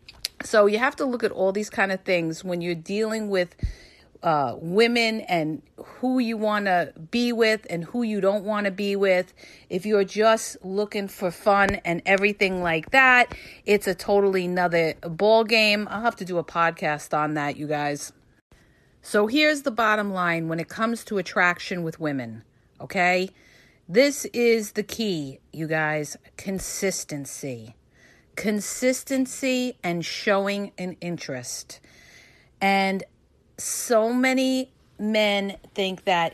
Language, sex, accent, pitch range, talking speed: English, female, American, 170-210 Hz, 145 wpm